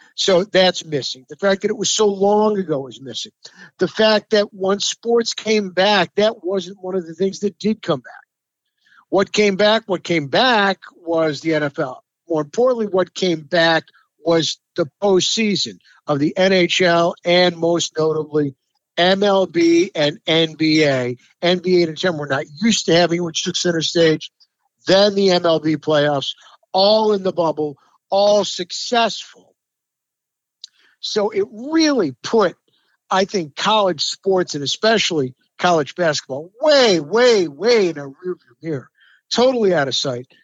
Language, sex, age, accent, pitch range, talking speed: English, male, 50-69, American, 160-215 Hz, 150 wpm